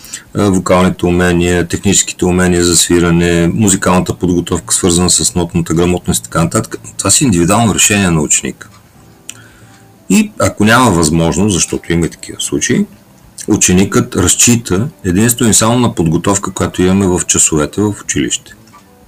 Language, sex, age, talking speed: Bulgarian, male, 50-69, 130 wpm